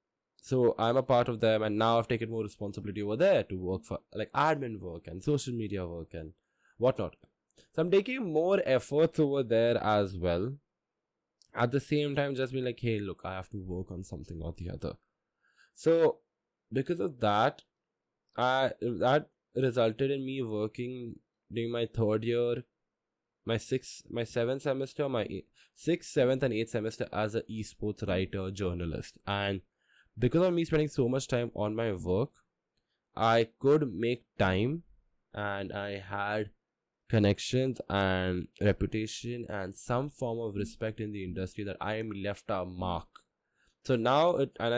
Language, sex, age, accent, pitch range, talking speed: English, male, 10-29, Indian, 100-125 Hz, 165 wpm